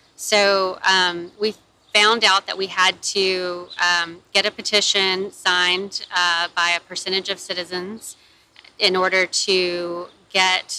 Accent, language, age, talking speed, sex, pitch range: American, English, 20-39, 135 wpm, female, 180-200 Hz